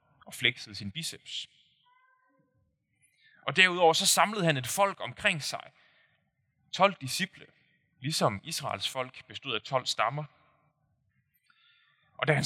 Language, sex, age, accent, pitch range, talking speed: Danish, male, 20-39, native, 125-165 Hz, 120 wpm